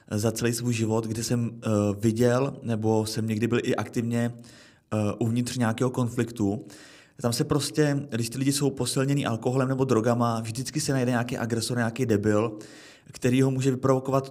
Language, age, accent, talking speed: Czech, 30-49, native, 170 wpm